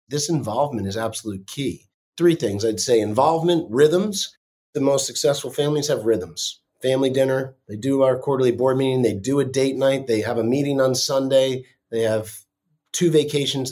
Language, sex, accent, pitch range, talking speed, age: English, male, American, 110-140 Hz, 175 wpm, 30-49